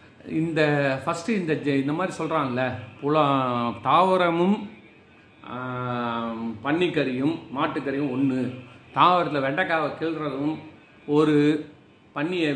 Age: 40-59